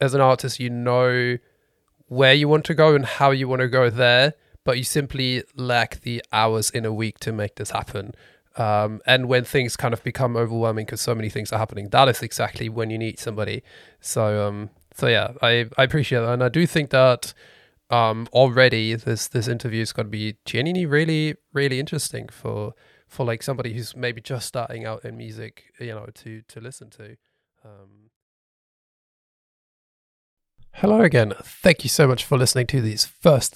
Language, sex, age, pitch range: English, male, 20-39, 115-135 Hz